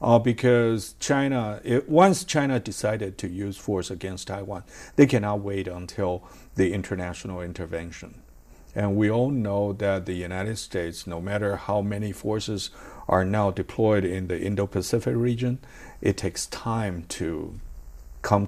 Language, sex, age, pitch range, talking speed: English, male, 50-69, 90-110 Hz, 140 wpm